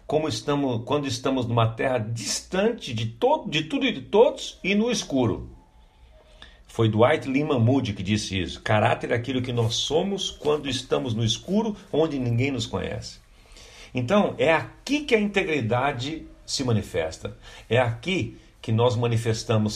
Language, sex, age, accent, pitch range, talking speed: Portuguese, male, 60-79, Brazilian, 105-140 Hz, 155 wpm